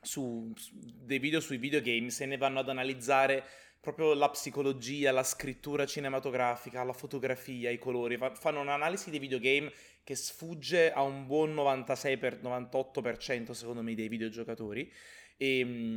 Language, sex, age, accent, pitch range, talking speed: Italian, male, 20-39, native, 120-150 Hz, 140 wpm